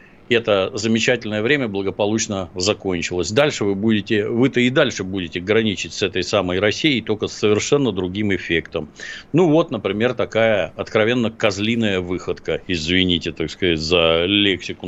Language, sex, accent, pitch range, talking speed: Russian, male, native, 95-120 Hz, 135 wpm